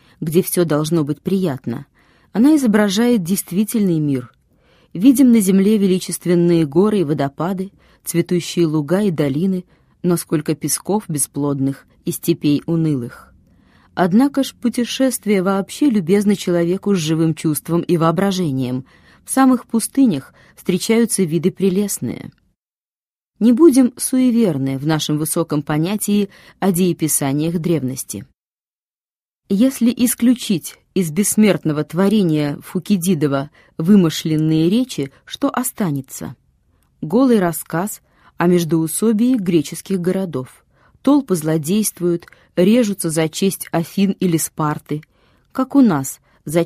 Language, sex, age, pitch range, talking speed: Russian, female, 20-39, 160-210 Hz, 105 wpm